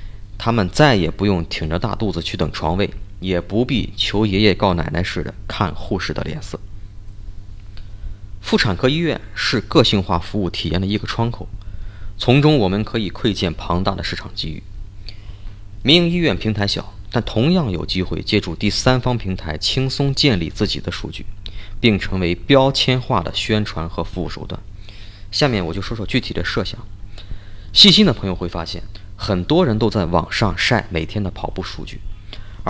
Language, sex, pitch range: Chinese, male, 95-110 Hz